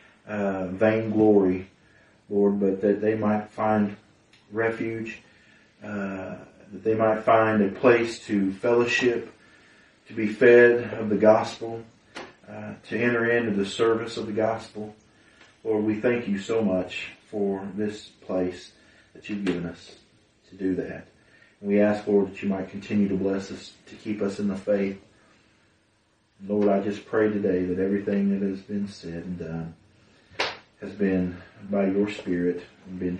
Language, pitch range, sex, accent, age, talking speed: English, 95-110 Hz, male, American, 40-59, 155 wpm